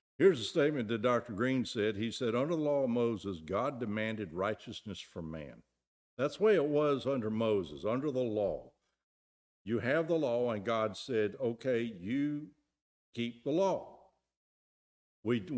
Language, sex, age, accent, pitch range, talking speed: English, male, 60-79, American, 105-135 Hz, 160 wpm